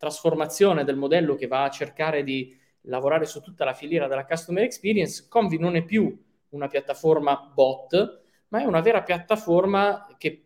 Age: 20-39